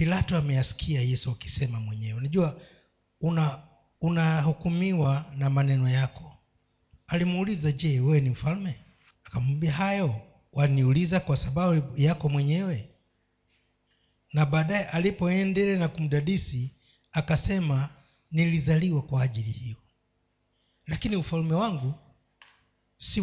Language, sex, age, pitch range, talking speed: Swahili, male, 50-69, 115-180 Hz, 95 wpm